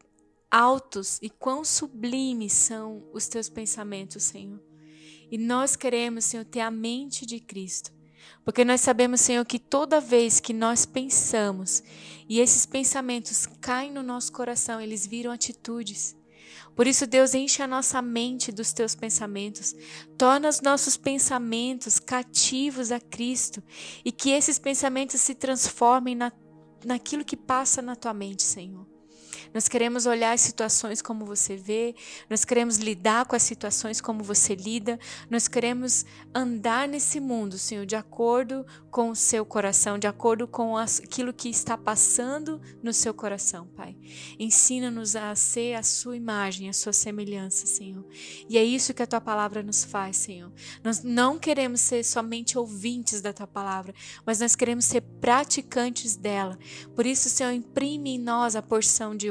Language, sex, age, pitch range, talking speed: Portuguese, female, 20-39, 205-250 Hz, 155 wpm